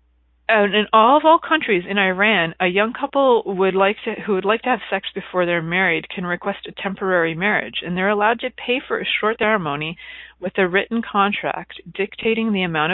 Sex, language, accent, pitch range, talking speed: female, English, American, 180-245 Hz, 205 wpm